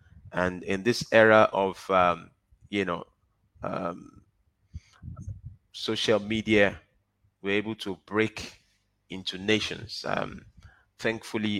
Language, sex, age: English, male, 30-49